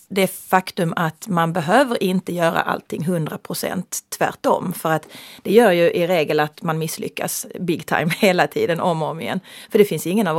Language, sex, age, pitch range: Finnish, female, 30-49, 170-215 Hz